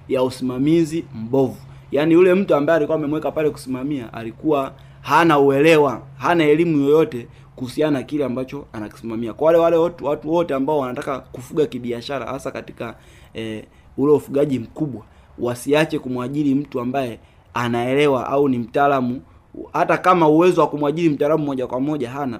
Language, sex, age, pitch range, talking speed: Swahili, male, 30-49, 115-145 Hz, 145 wpm